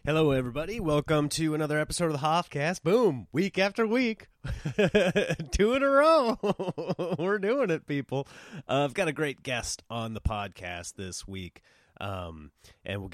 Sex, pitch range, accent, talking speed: male, 105-150 Hz, American, 160 wpm